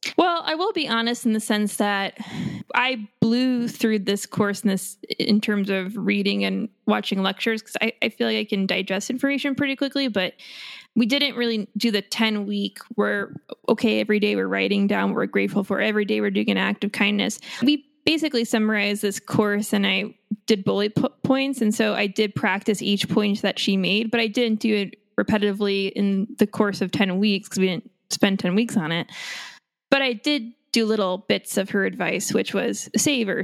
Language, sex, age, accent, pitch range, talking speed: English, female, 20-39, American, 195-235 Hz, 200 wpm